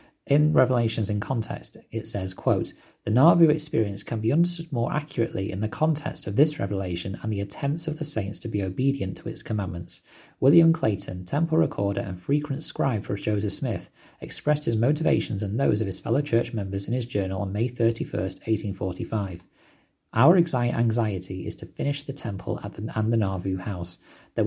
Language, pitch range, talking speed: English, 100-125 Hz, 180 wpm